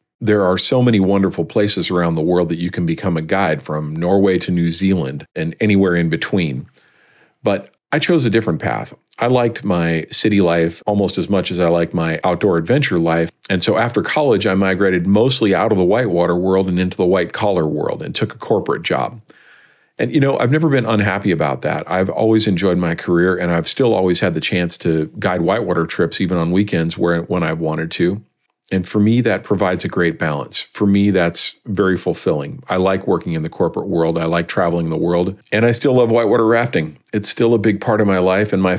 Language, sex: English, male